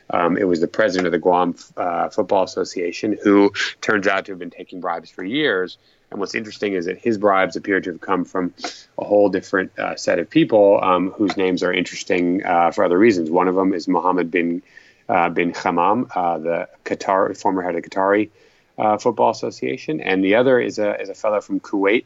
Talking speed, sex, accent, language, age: 215 wpm, male, American, English, 30-49